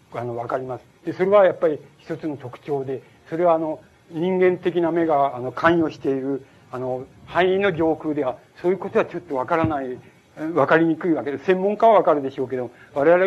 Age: 60-79